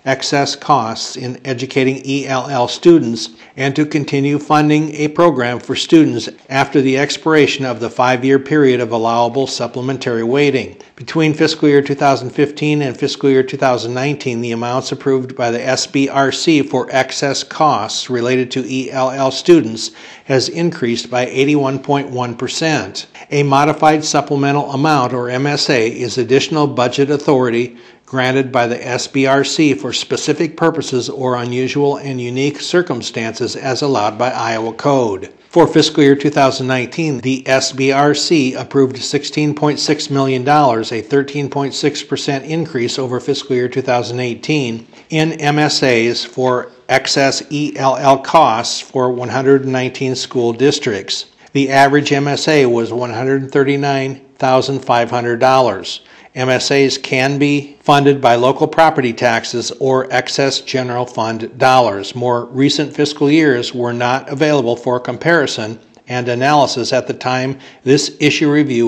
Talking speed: 120 wpm